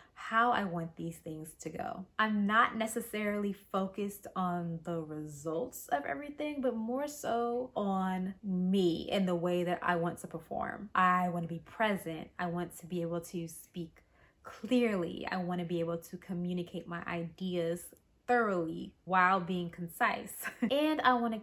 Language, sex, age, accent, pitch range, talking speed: English, female, 20-39, American, 170-195 Hz, 160 wpm